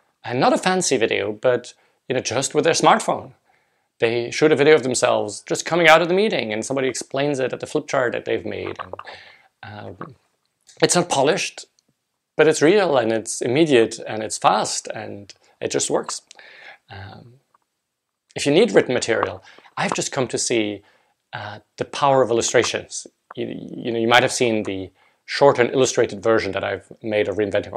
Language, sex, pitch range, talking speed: English, male, 110-135 Hz, 180 wpm